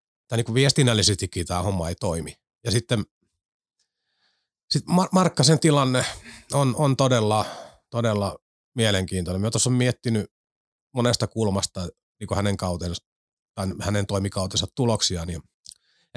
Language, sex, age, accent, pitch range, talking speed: Finnish, male, 30-49, native, 95-120 Hz, 110 wpm